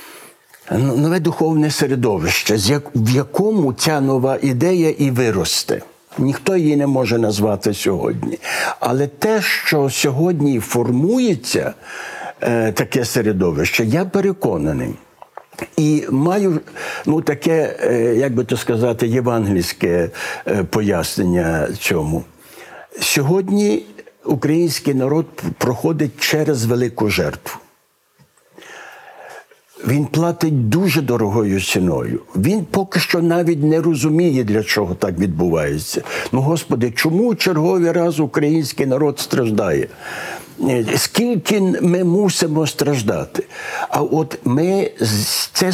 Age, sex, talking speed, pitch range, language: 60-79, male, 95 wpm, 125-175 Hz, Ukrainian